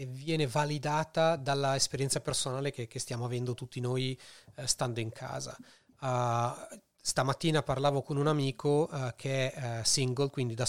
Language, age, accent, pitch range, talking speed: Italian, 30-49, native, 125-150 Hz, 150 wpm